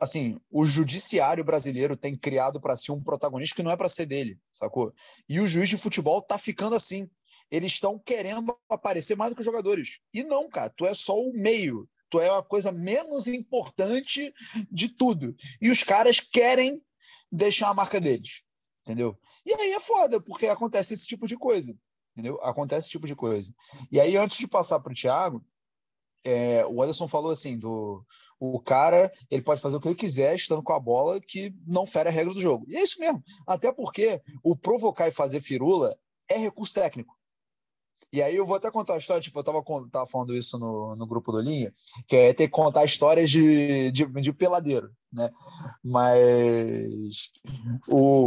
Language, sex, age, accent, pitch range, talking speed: Portuguese, male, 20-39, Brazilian, 130-205 Hz, 190 wpm